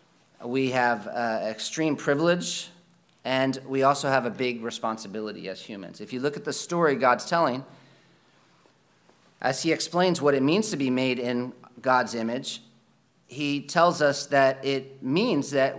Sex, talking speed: male, 155 wpm